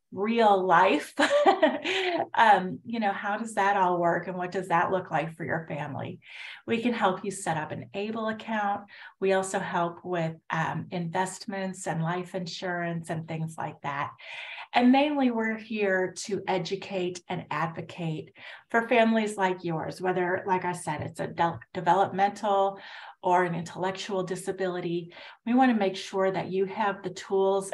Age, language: 30-49, English